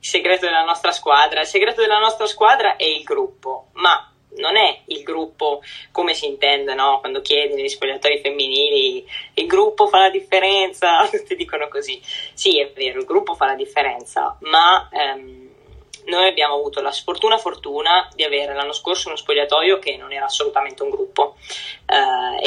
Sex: female